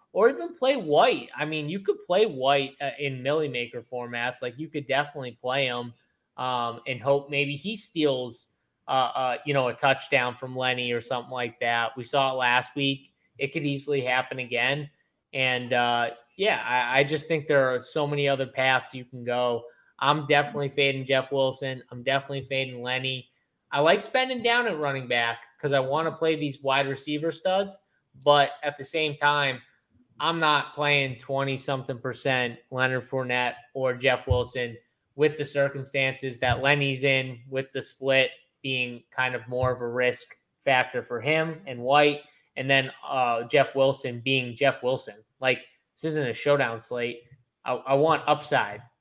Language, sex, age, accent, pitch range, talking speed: English, male, 20-39, American, 125-155 Hz, 175 wpm